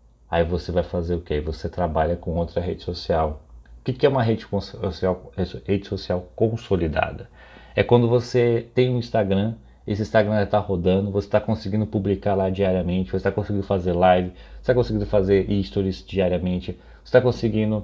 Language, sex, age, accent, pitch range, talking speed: Portuguese, male, 30-49, Brazilian, 90-110 Hz, 170 wpm